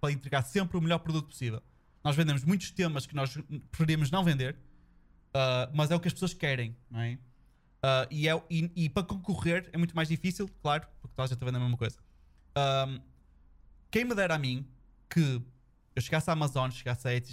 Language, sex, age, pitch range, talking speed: Portuguese, male, 20-39, 130-170 Hz, 210 wpm